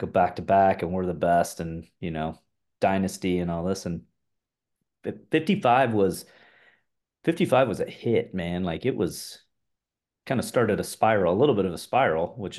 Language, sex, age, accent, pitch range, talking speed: English, male, 30-49, American, 95-135 Hz, 180 wpm